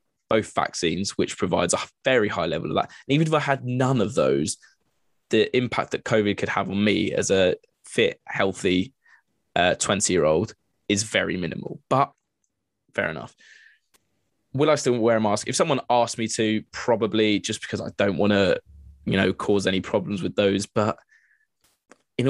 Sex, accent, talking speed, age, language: male, British, 180 wpm, 20-39, English